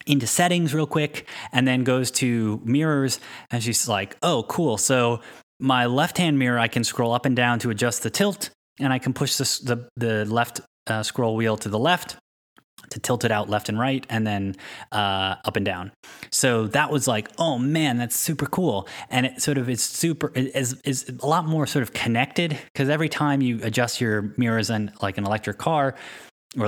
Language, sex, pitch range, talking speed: English, male, 105-135 Hz, 210 wpm